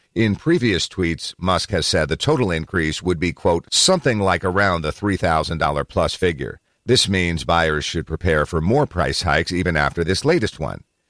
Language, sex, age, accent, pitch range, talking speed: English, male, 50-69, American, 85-105 Hz, 175 wpm